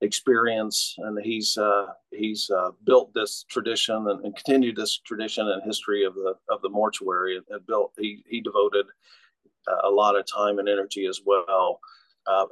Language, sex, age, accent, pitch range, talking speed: English, male, 50-69, American, 100-120 Hz, 170 wpm